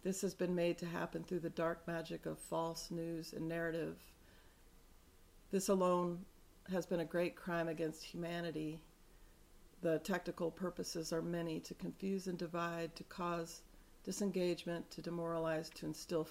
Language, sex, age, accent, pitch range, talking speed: English, female, 40-59, American, 160-180 Hz, 145 wpm